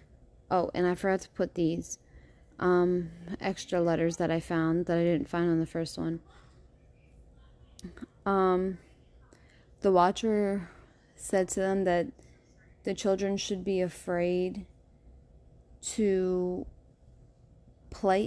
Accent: American